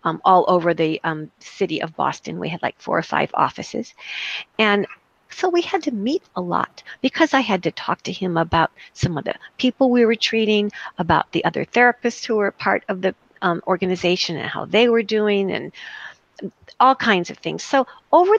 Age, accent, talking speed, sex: 50-69, American, 200 wpm, female